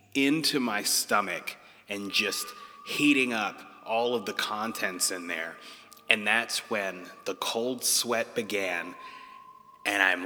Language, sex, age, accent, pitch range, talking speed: English, male, 30-49, American, 110-145 Hz, 130 wpm